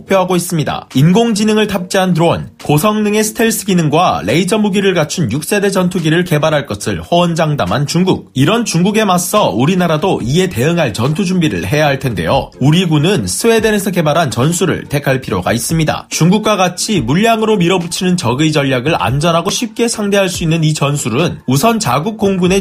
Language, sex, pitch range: Korean, male, 145-190 Hz